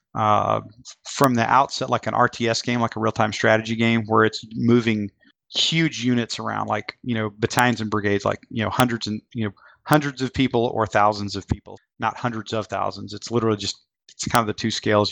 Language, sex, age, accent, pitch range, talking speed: English, male, 30-49, American, 105-120 Hz, 205 wpm